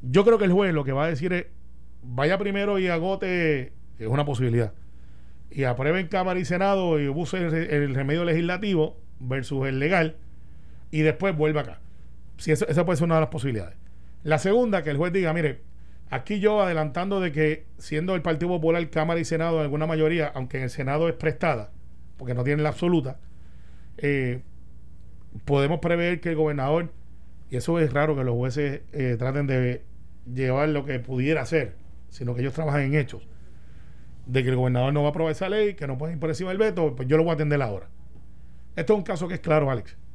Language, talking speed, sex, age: Spanish, 200 wpm, male, 40-59